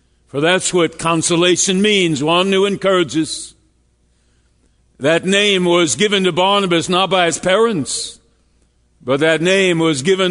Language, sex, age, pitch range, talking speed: English, male, 60-79, 125-190 Hz, 135 wpm